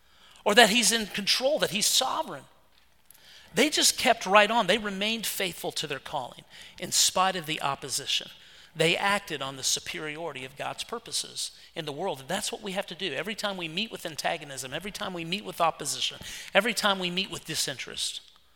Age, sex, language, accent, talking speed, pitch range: 40-59, male, English, American, 190 wpm, 155-205 Hz